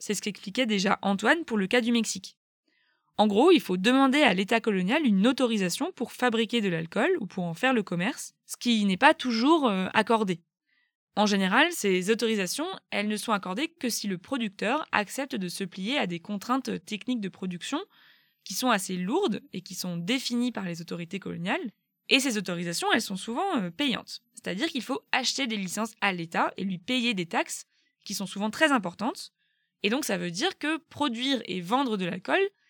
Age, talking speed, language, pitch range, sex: 20-39, 200 wpm, French, 195-260 Hz, female